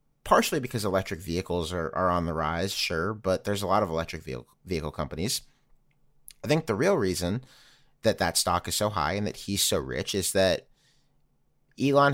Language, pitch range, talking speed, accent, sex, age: English, 85-100 Hz, 190 wpm, American, male, 30-49